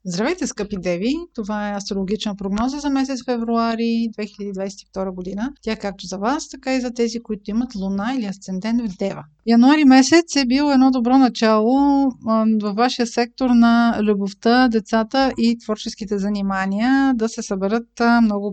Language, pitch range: Bulgarian, 200-250 Hz